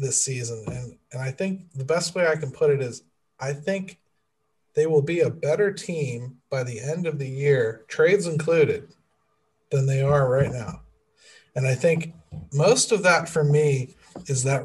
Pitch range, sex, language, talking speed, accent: 125-150 Hz, male, English, 185 wpm, American